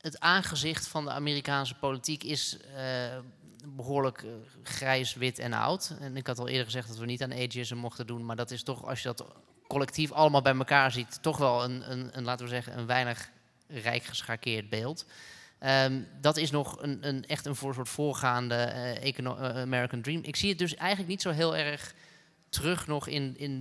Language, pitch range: Dutch, 120-135 Hz